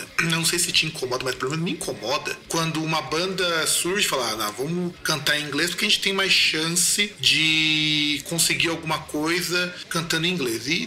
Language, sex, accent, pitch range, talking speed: Portuguese, male, Brazilian, 150-195 Hz, 200 wpm